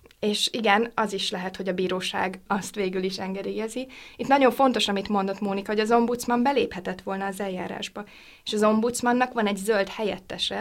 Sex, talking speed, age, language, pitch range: female, 180 wpm, 20-39, Hungarian, 195-220 Hz